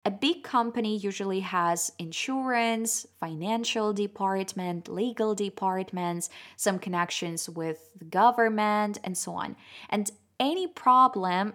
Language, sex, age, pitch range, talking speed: Russian, female, 20-39, 175-220 Hz, 110 wpm